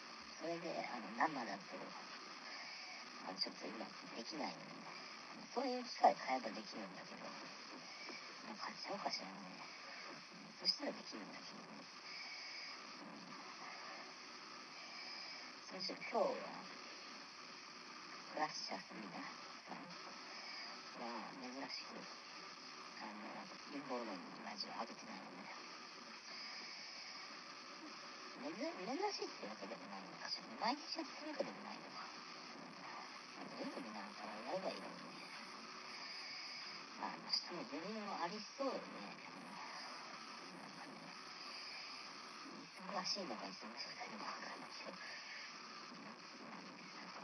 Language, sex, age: Japanese, male, 40-59